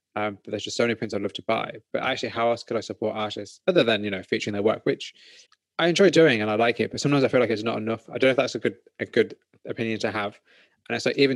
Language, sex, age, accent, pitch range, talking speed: English, male, 20-39, British, 105-120 Hz, 305 wpm